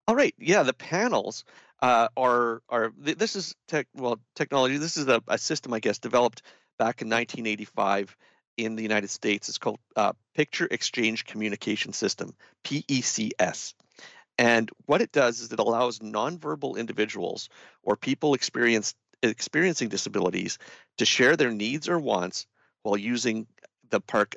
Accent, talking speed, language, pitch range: American, 145 wpm, English, 105-125 Hz